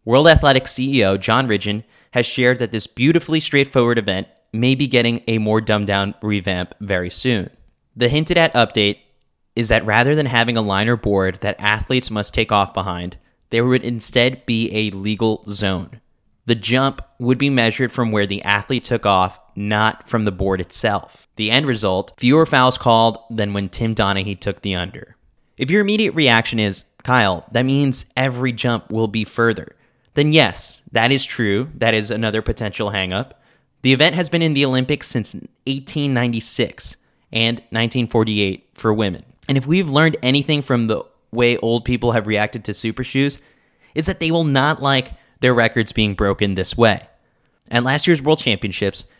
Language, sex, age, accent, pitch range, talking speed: English, male, 20-39, American, 105-130 Hz, 175 wpm